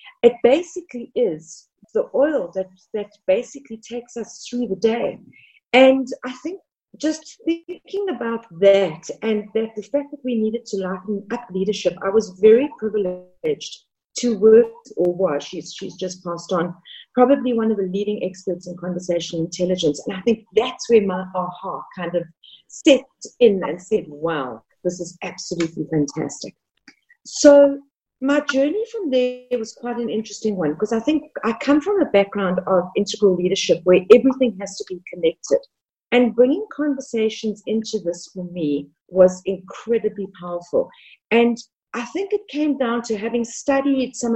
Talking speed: 160 wpm